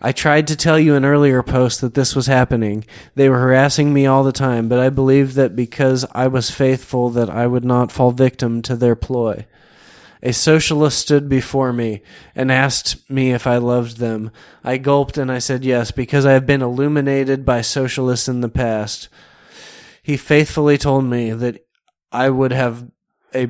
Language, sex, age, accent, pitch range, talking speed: English, male, 20-39, American, 120-135 Hz, 190 wpm